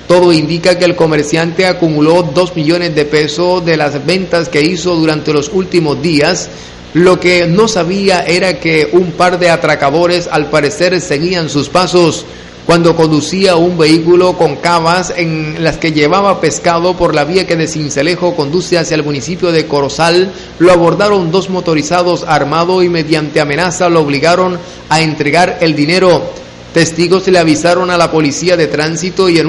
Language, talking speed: Spanish, 165 wpm